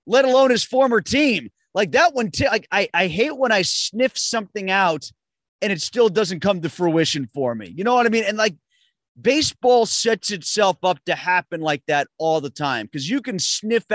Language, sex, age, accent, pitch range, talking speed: English, male, 30-49, American, 160-205 Hz, 210 wpm